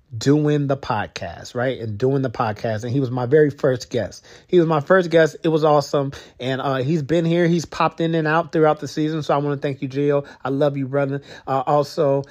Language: English